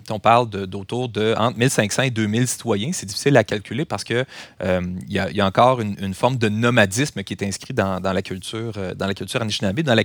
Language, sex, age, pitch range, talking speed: French, male, 30-49, 100-120 Hz, 240 wpm